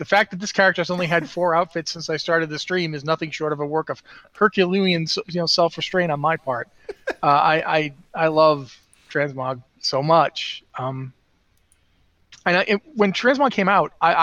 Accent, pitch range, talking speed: American, 145-180 Hz, 195 wpm